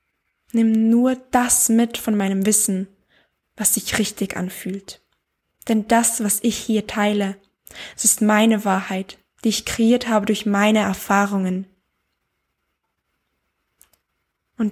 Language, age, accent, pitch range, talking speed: German, 10-29, German, 200-240 Hz, 120 wpm